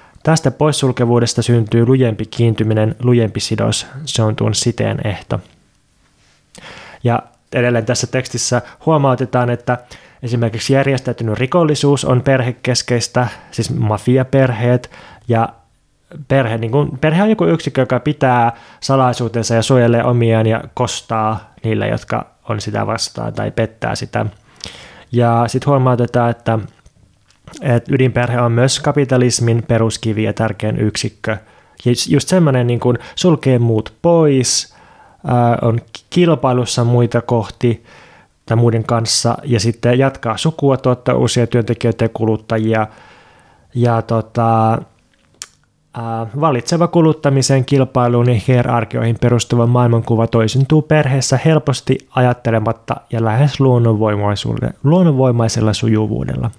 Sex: male